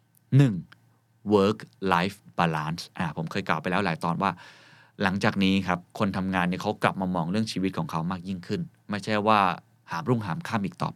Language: Thai